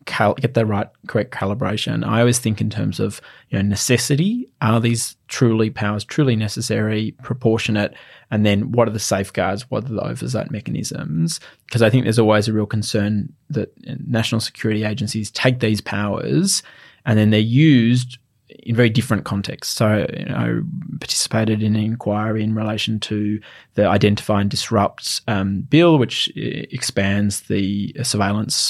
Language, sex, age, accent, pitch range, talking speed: English, male, 20-39, Australian, 105-125 Hz, 160 wpm